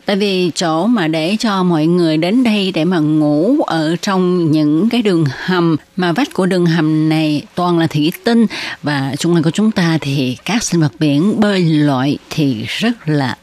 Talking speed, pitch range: 200 wpm, 150-195 Hz